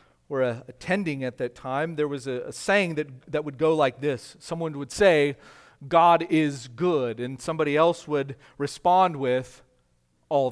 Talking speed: 160 wpm